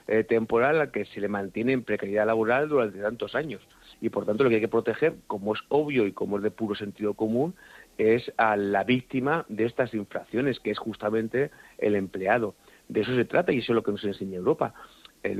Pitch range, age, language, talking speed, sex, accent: 105-120 Hz, 50-69, Spanish, 220 wpm, male, Spanish